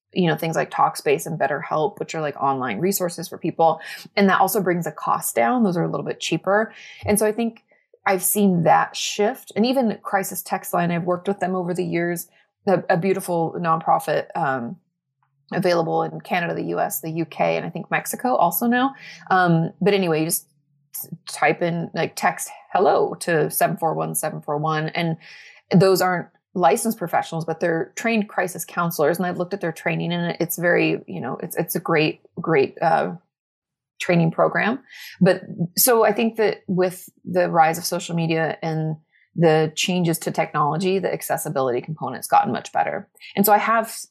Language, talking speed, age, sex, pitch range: English, 180 wpm, 20-39, female, 160-195 Hz